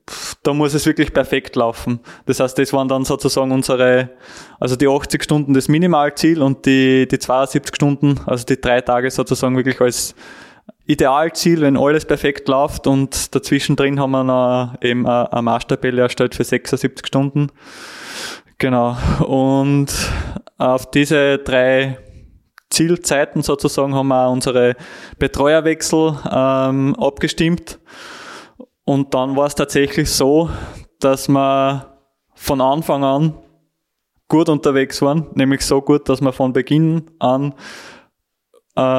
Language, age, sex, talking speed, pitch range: German, 20-39, male, 130 wpm, 130-145 Hz